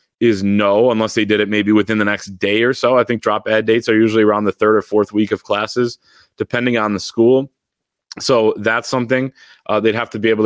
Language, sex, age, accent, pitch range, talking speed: English, male, 20-39, American, 105-125 Hz, 230 wpm